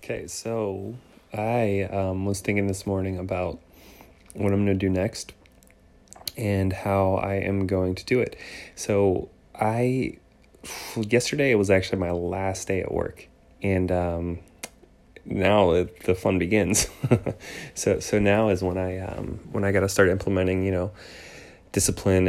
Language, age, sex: English, 30-49, male